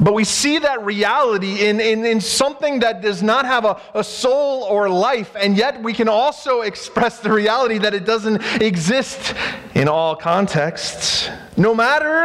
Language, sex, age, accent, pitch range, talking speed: English, male, 40-59, American, 205-270 Hz, 170 wpm